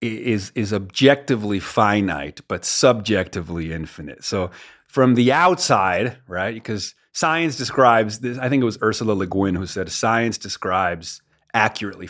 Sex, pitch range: male, 105-135 Hz